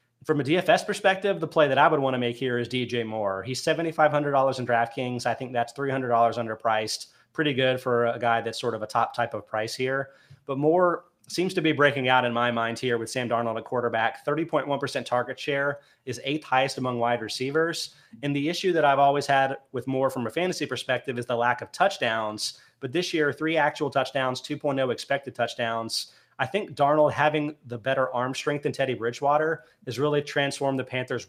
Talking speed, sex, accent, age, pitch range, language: 205 wpm, male, American, 30-49, 120-145 Hz, English